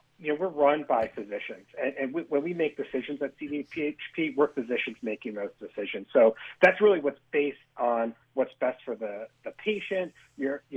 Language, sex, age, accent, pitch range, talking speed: English, male, 40-59, American, 120-155 Hz, 180 wpm